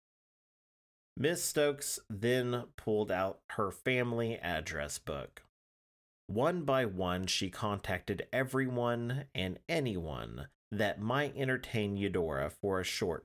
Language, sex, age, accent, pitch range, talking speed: English, male, 30-49, American, 90-130 Hz, 110 wpm